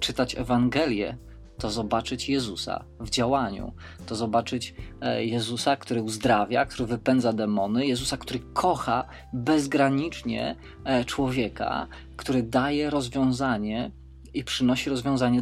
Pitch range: 115-135 Hz